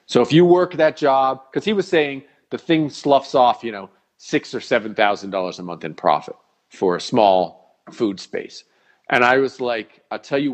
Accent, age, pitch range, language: American, 40-59, 120-155 Hz, English